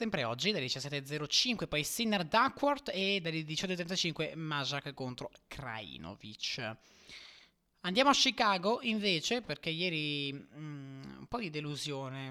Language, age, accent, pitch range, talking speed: Italian, 20-39, native, 135-170 Hz, 110 wpm